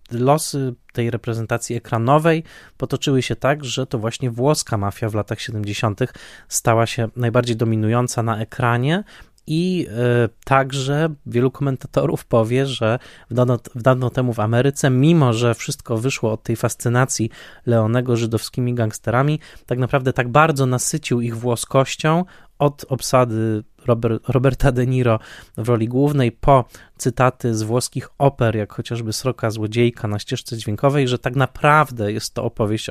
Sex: male